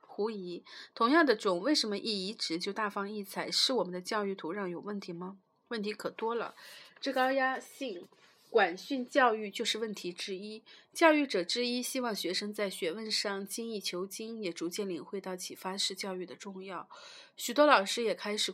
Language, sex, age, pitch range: Chinese, female, 30-49, 185-235 Hz